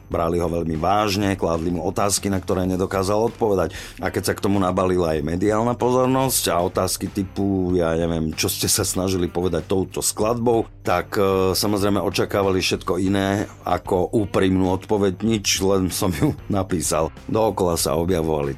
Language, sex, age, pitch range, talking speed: Slovak, male, 50-69, 80-100 Hz, 160 wpm